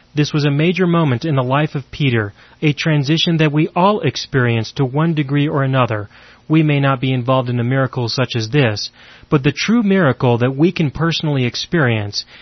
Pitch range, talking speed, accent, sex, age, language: 120-155 Hz, 200 wpm, American, male, 30-49, English